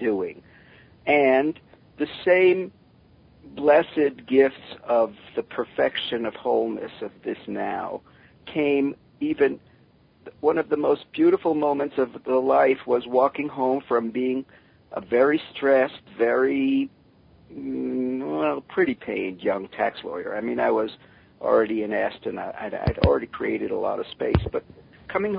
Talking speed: 130 wpm